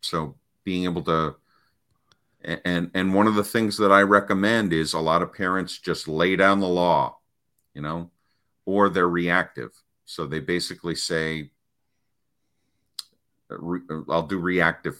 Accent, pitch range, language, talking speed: American, 75-90 Hz, English, 140 wpm